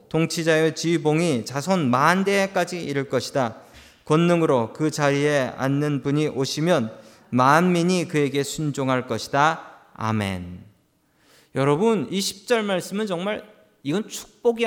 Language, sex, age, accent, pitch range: Korean, male, 40-59, native, 140-210 Hz